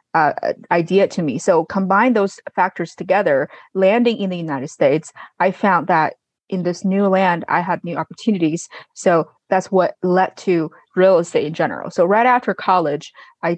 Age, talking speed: 20-39, 170 wpm